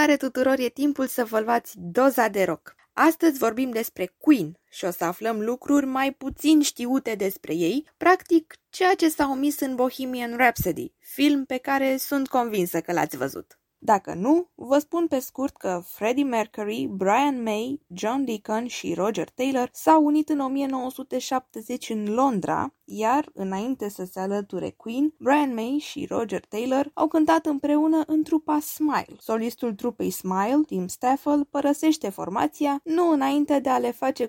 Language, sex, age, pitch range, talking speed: Romanian, female, 20-39, 225-290 Hz, 160 wpm